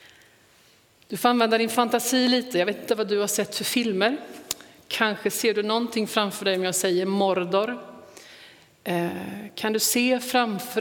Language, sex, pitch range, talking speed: Swedish, female, 165-220 Hz, 160 wpm